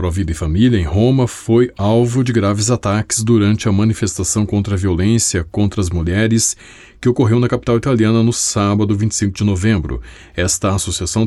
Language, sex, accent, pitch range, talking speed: Portuguese, male, Brazilian, 95-115 Hz, 170 wpm